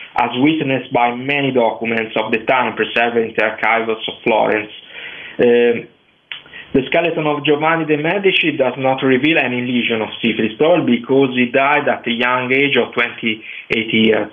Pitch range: 120-155 Hz